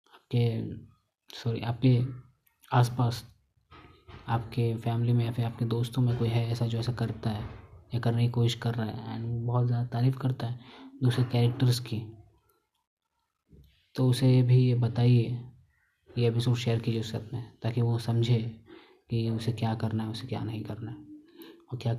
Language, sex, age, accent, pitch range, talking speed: Hindi, male, 20-39, native, 115-125 Hz, 170 wpm